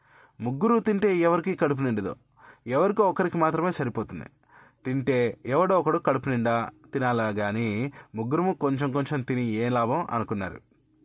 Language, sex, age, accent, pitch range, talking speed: Telugu, male, 20-39, native, 125-170 Hz, 125 wpm